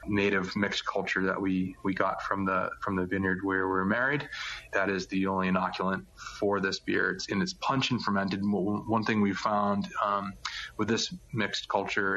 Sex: male